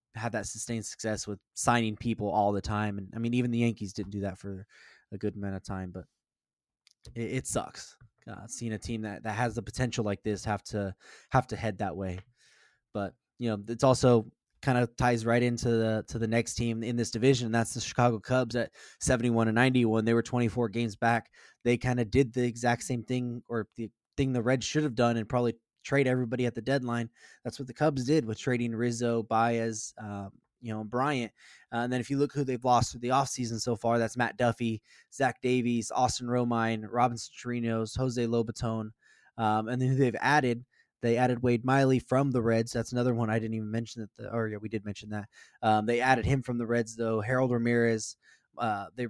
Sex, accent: male, American